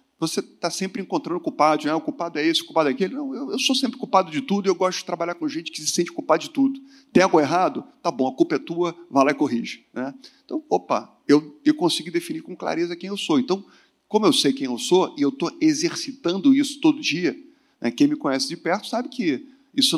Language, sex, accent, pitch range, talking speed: Portuguese, male, Brazilian, 165-275 Hz, 250 wpm